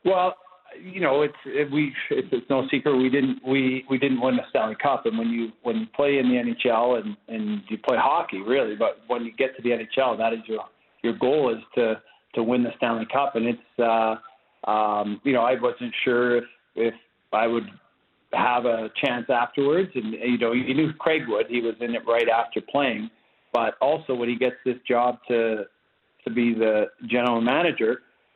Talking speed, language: 205 wpm, English